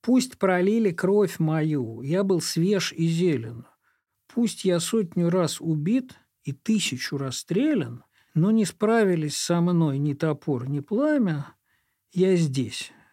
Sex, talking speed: male, 130 wpm